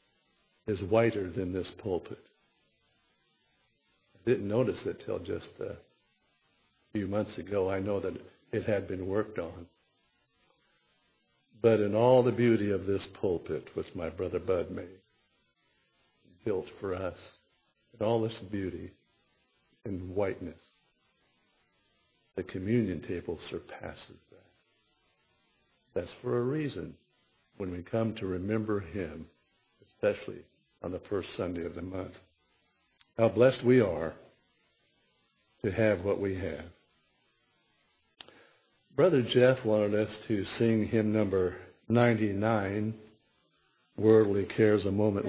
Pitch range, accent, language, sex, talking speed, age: 95-115 Hz, American, English, male, 120 wpm, 60-79